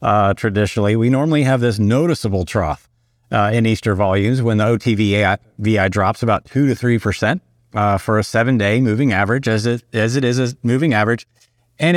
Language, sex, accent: English, male, American